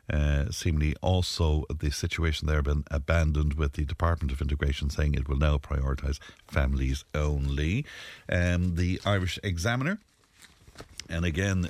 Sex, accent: male, Irish